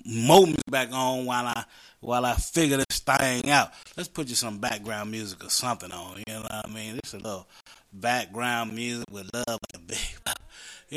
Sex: male